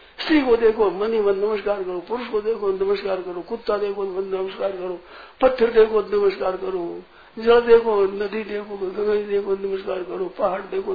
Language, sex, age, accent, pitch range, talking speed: Hindi, male, 60-79, native, 195-280 Hz, 165 wpm